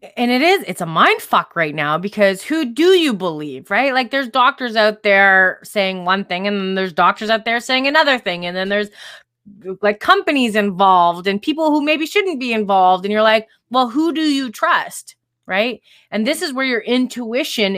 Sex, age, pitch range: female, 20-39, 185-235 Hz